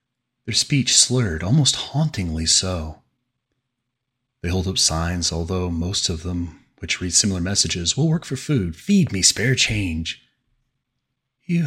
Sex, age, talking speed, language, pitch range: male, 30-49, 135 wpm, English, 85-125 Hz